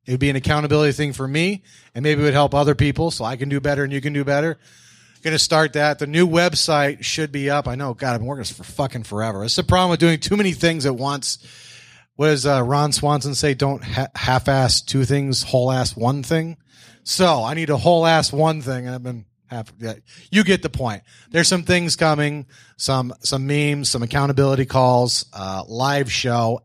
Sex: male